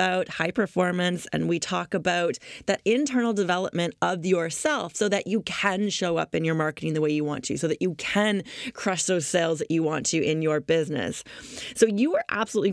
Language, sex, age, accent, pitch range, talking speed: English, female, 30-49, American, 170-220 Hz, 205 wpm